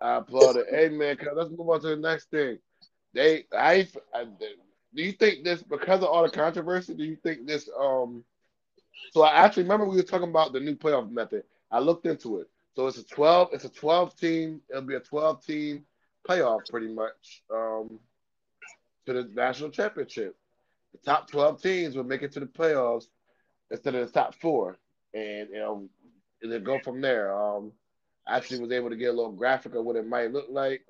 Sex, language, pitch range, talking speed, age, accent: male, English, 120-160 Hz, 200 wpm, 20-39, American